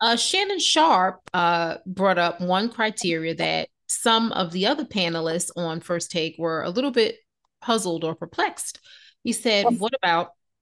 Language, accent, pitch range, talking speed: English, American, 160-200 Hz, 160 wpm